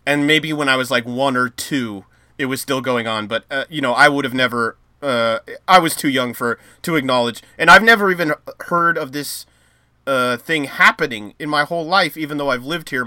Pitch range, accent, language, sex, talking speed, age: 120-155 Hz, American, English, male, 225 wpm, 30-49